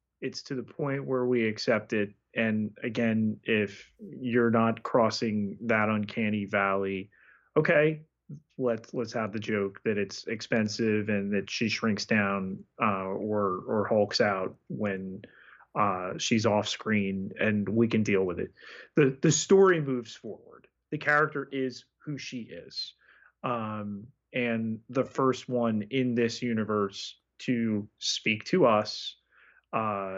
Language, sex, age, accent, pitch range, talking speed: English, male, 30-49, American, 100-120 Hz, 140 wpm